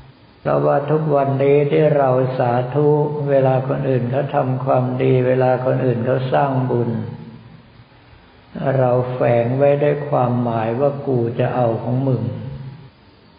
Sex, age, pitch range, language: male, 60-79, 125-140 Hz, Thai